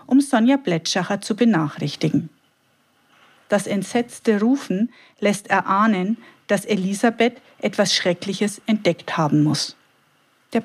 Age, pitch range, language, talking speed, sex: 50-69, 185-250 Hz, German, 100 wpm, female